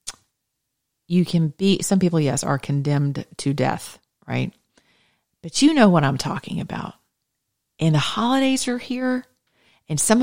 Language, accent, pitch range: English, American, 140-190 Hz